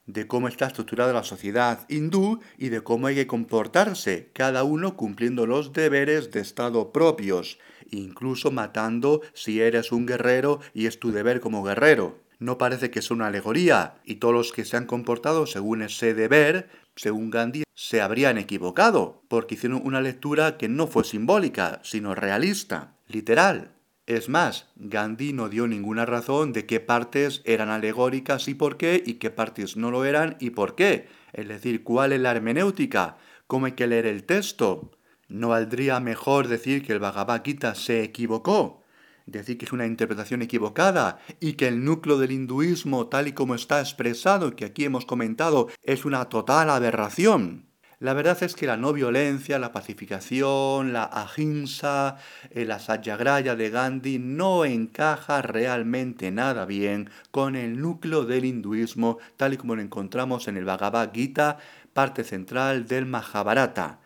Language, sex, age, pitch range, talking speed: Spanish, male, 40-59, 115-140 Hz, 165 wpm